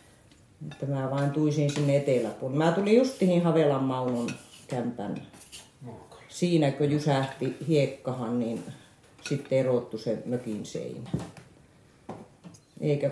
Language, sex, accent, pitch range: Finnish, female, native, 135-165 Hz